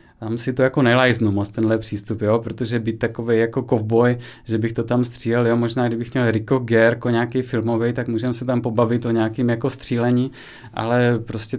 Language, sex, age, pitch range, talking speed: Czech, male, 20-39, 120-140 Hz, 200 wpm